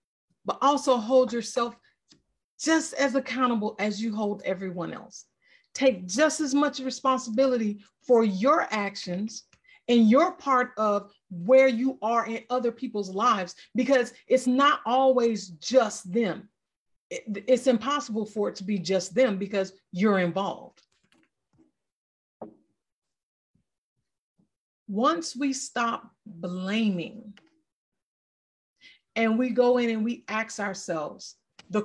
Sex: female